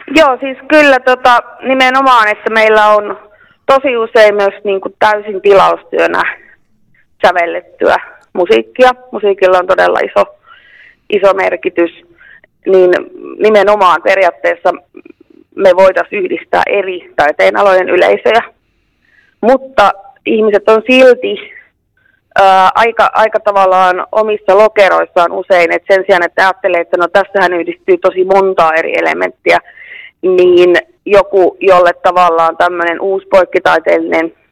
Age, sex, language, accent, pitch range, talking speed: 30-49, female, Finnish, native, 180-225 Hz, 110 wpm